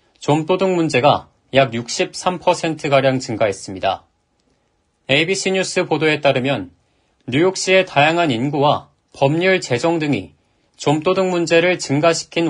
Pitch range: 130-180 Hz